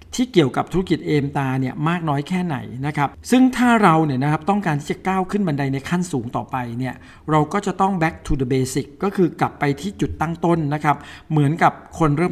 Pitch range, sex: 135-175 Hz, male